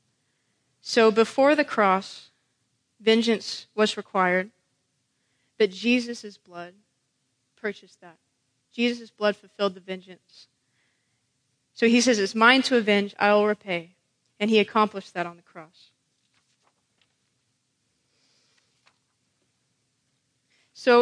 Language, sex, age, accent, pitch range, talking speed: English, female, 20-39, American, 180-240 Hz, 100 wpm